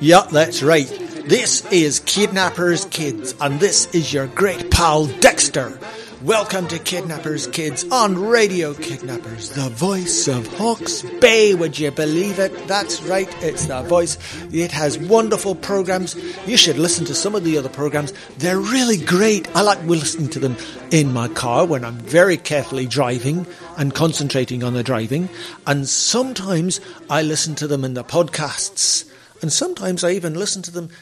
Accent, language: British, English